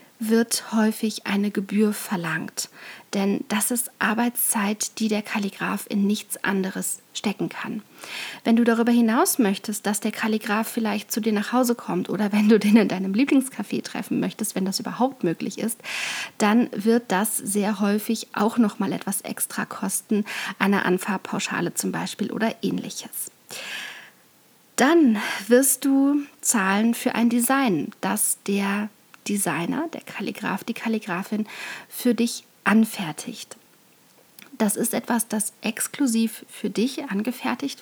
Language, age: German, 40-59